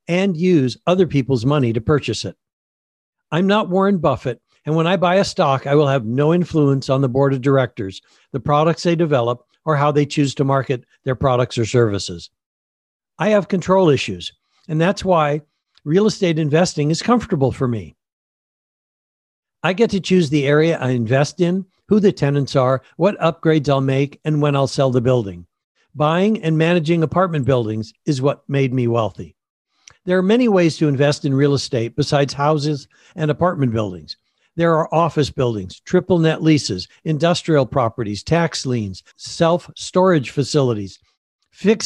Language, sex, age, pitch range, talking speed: English, male, 60-79, 125-175 Hz, 170 wpm